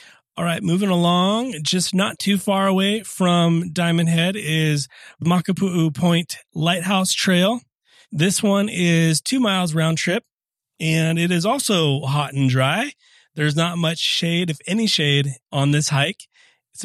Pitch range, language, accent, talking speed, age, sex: 145-180 Hz, English, American, 150 wpm, 30-49, male